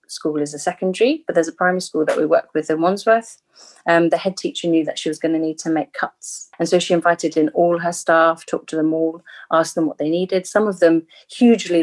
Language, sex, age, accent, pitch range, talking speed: English, female, 30-49, British, 155-190 Hz, 255 wpm